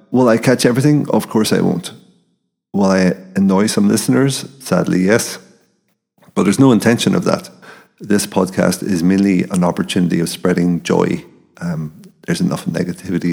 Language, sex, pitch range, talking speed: English, male, 90-100 Hz, 155 wpm